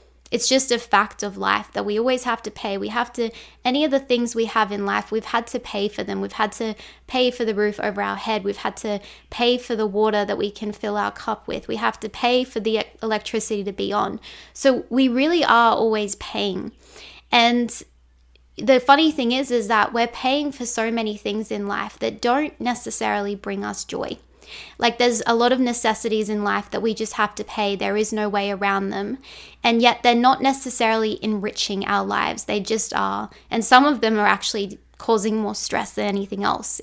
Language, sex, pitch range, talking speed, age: English, female, 205-240 Hz, 215 wpm, 10-29